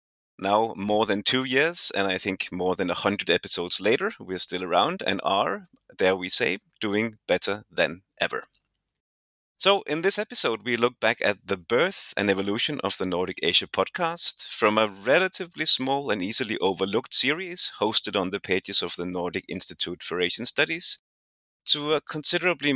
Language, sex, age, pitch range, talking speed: English, male, 30-49, 90-140 Hz, 170 wpm